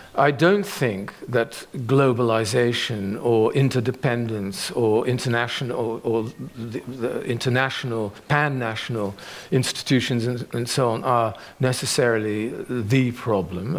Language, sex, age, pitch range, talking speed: Dutch, male, 50-69, 115-145 Hz, 105 wpm